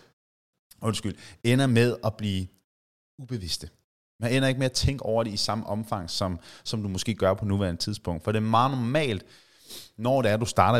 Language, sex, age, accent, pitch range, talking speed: Danish, male, 30-49, native, 95-115 Hz, 200 wpm